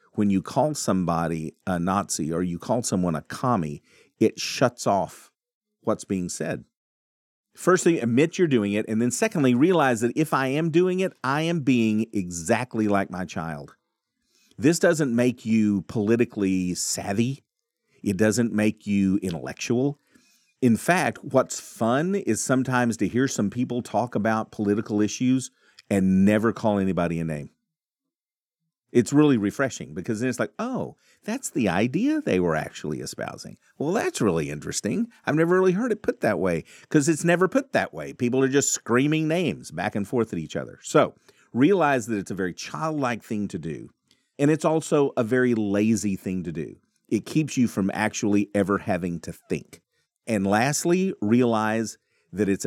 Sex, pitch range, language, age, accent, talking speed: male, 100-150 Hz, English, 40-59, American, 170 wpm